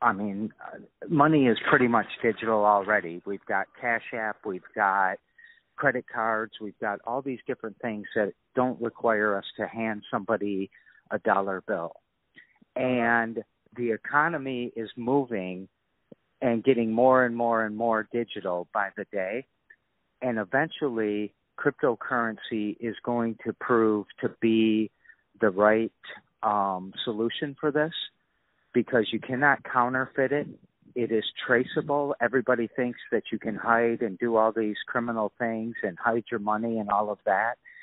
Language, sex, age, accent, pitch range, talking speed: English, male, 50-69, American, 105-125 Hz, 145 wpm